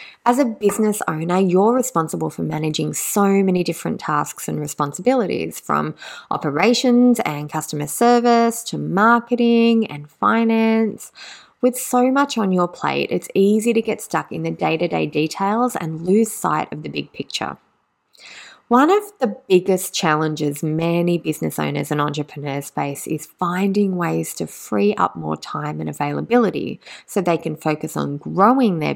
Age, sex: 20-39, female